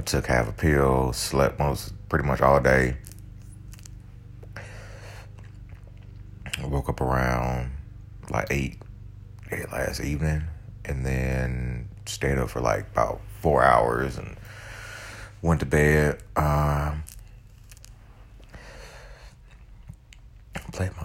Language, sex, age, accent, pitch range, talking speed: English, male, 30-49, American, 70-105 Hz, 105 wpm